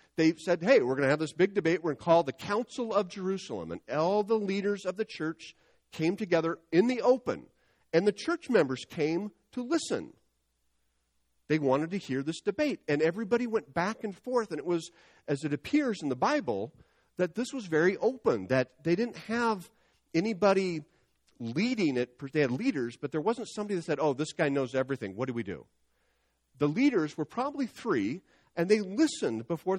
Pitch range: 135-200 Hz